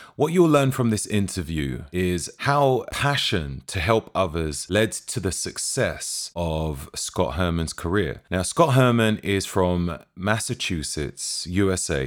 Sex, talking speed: male, 135 wpm